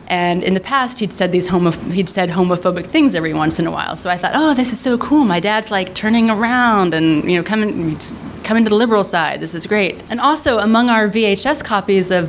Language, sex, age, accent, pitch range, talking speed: English, female, 20-39, American, 175-215 Hz, 240 wpm